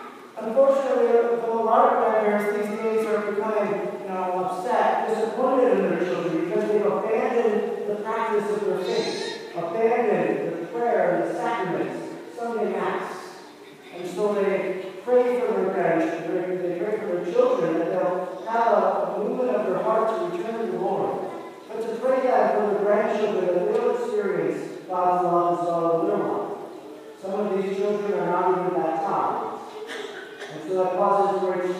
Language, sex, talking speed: English, male, 160 wpm